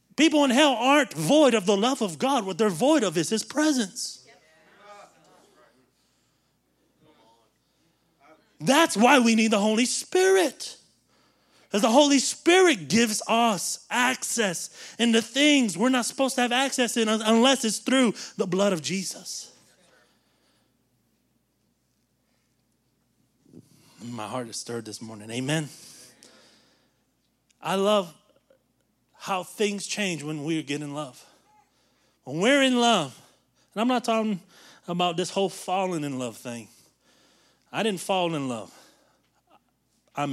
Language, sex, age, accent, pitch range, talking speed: English, male, 30-49, American, 155-230 Hz, 130 wpm